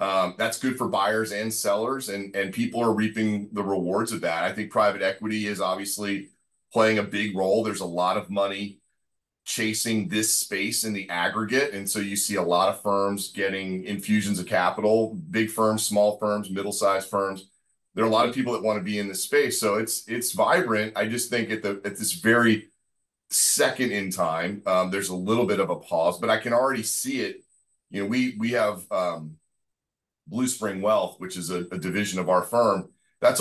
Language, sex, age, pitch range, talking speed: English, male, 30-49, 95-110 Hz, 210 wpm